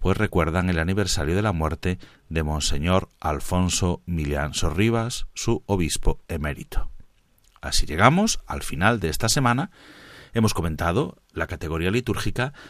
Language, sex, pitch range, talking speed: Spanish, male, 80-110 Hz, 130 wpm